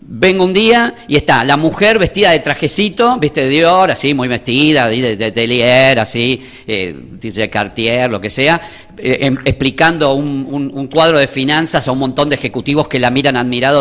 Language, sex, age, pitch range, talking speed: Spanish, male, 50-69, 130-180 Hz, 200 wpm